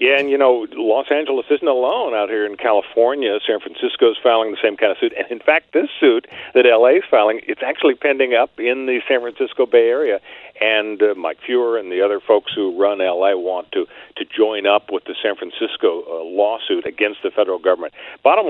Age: 50-69